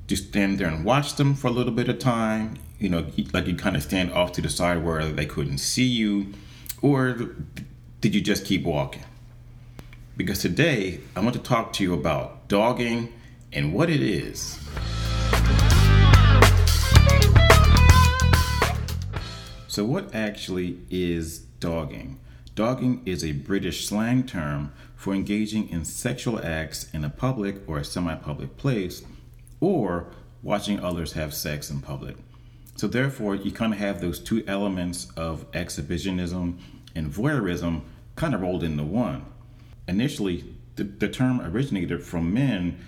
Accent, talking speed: American, 145 wpm